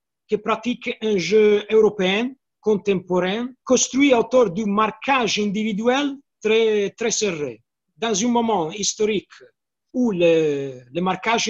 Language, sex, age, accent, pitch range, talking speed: French, male, 50-69, Italian, 165-230 Hz, 115 wpm